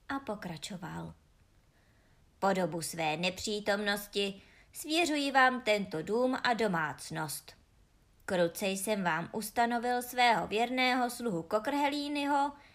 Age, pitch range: 20-39, 170-260 Hz